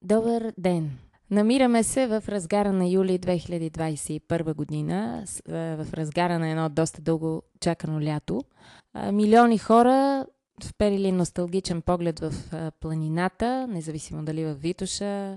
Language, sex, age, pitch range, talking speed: Bulgarian, female, 20-39, 160-205 Hz, 115 wpm